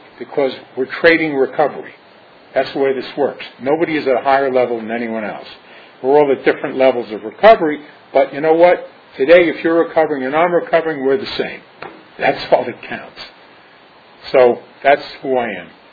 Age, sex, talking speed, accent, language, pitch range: 50-69, male, 180 wpm, American, English, 125-170 Hz